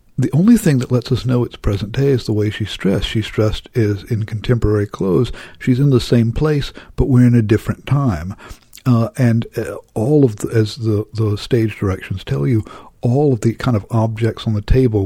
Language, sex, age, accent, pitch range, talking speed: English, male, 60-79, American, 105-125 Hz, 230 wpm